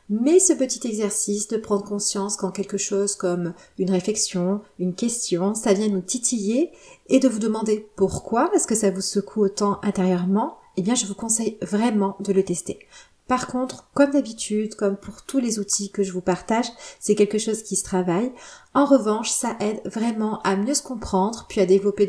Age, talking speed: 30-49, 195 wpm